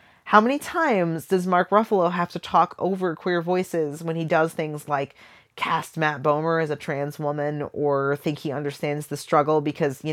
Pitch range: 150-195 Hz